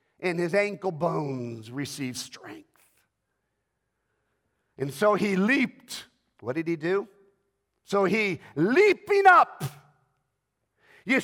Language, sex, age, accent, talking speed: English, male, 50-69, American, 100 wpm